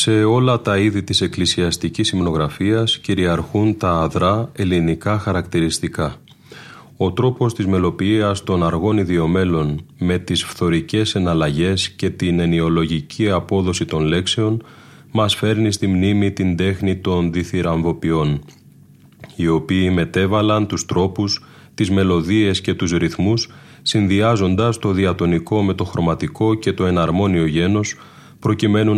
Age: 30-49